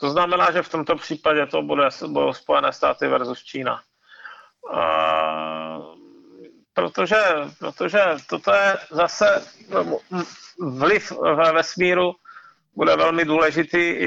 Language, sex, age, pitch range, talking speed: Czech, male, 40-59, 145-180 Hz, 110 wpm